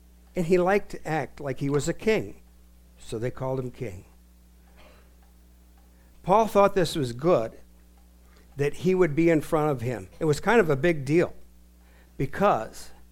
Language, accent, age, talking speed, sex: English, American, 60-79, 165 wpm, male